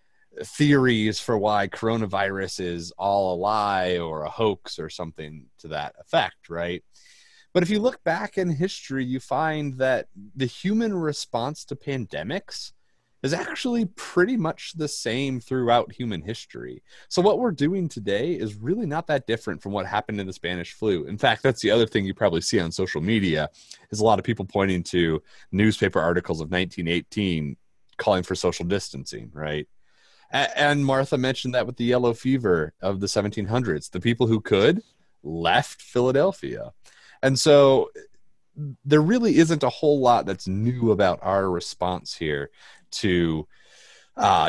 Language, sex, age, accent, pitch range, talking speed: English, male, 30-49, American, 95-145 Hz, 160 wpm